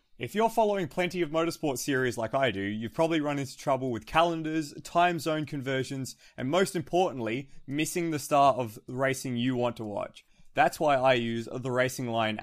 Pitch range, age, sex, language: 120-155 Hz, 20-39, male, English